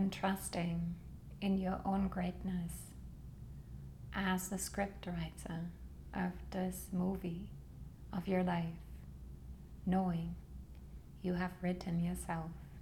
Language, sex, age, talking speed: English, female, 30-49, 95 wpm